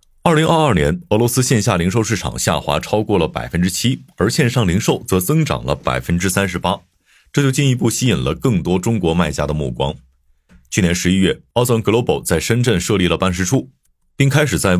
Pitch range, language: 85-120 Hz, Chinese